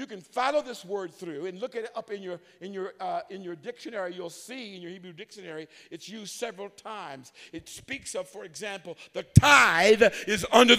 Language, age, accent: English, 50-69, American